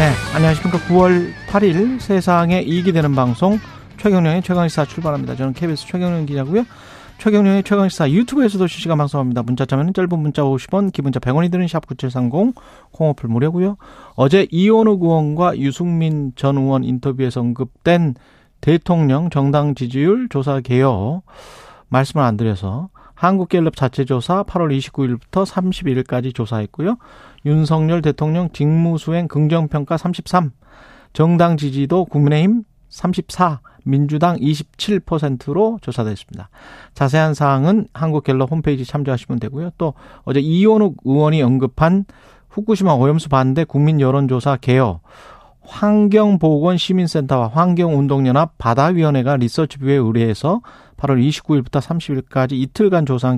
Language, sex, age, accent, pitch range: Korean, male, 40-59, native, 135-180 Hz